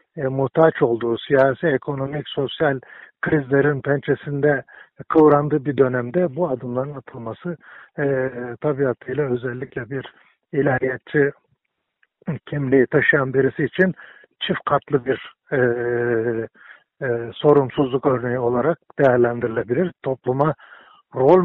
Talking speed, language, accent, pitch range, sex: 95 wpm, Turkish, native, 125-150 Hz, male